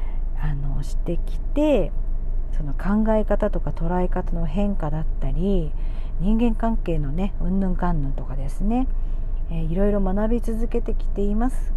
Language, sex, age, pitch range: Japanese, female, 50-69, 165-235 Hz